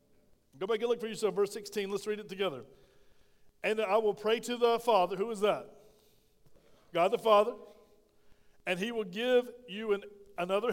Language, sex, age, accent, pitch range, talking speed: English, male, 50-69, American, 195-230 Hz, 175 wpm